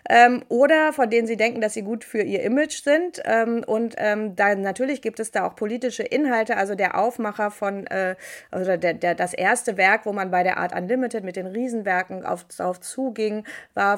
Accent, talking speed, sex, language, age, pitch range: German, 205 wpm, female, German, 30-49, 185-230 Hz